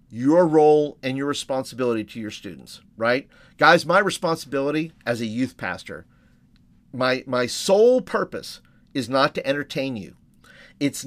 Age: 50-69